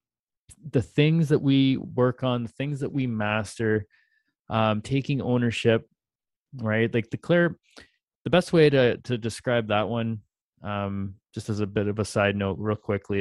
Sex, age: male, 30-49